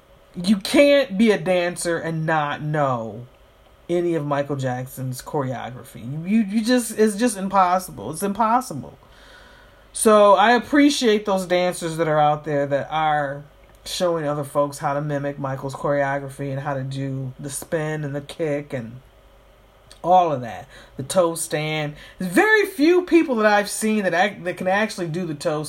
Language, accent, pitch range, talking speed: English, American, 145-220 Hz, 165 wpm